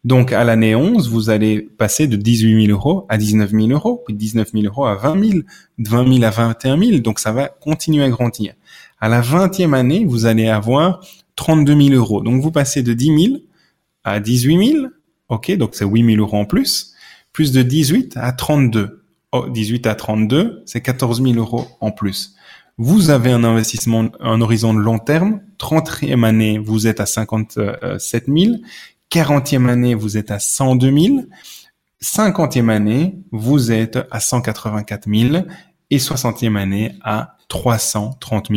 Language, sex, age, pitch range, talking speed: French, male, 20-39, 110-145 Hz, 175 wpm